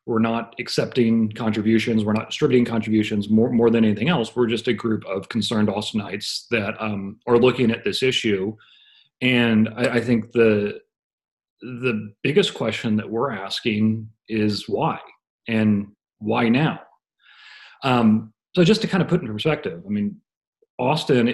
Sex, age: male, 40-59